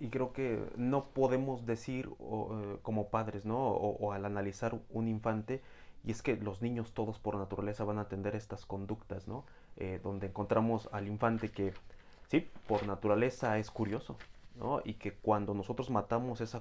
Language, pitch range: Spanish, 100-120 Hz